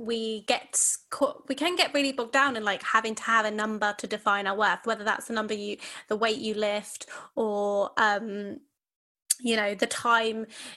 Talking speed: 195 wpm